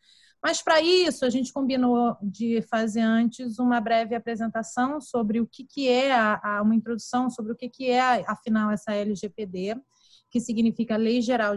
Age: 30-49